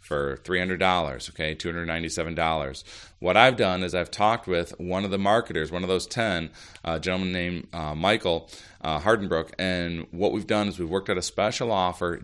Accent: American